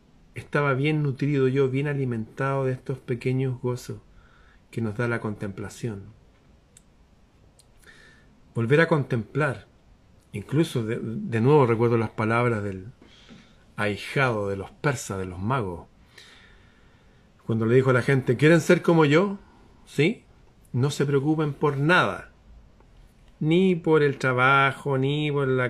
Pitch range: 110-140 Hz